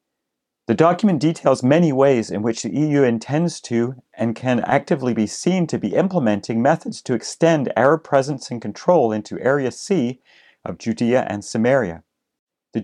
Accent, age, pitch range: American, 40-59, 115-165 Hz